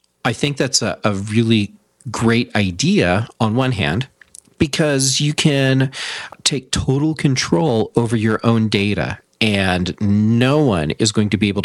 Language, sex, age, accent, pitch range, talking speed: English, male, 40-59, American, 100-130 Hz, 150 wpm